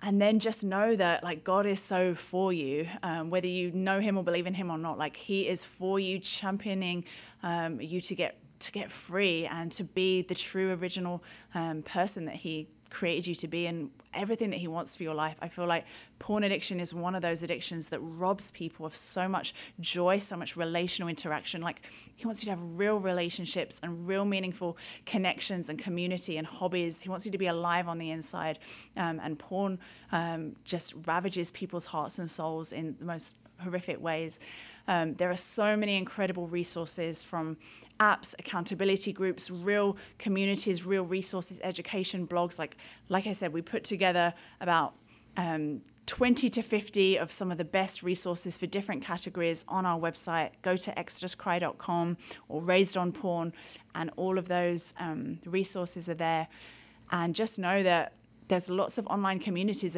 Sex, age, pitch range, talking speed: female, 20-39, 170-190 Hz, 185 wpm